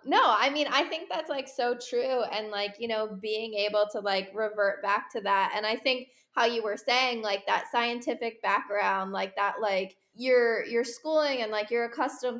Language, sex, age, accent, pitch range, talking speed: English, female, 10-29, American, 205-245 Hz, 205 wpm